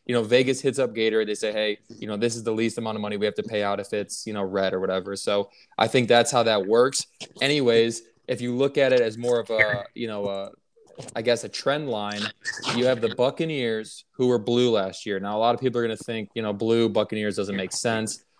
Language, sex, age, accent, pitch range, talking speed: English, male, 20-39, American, 110-135 Hz, 260 wpm